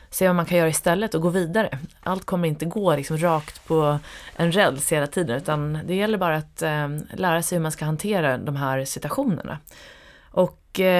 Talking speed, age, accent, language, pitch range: 190 wpm, 30-49, native, Swedish, 155-190 Hz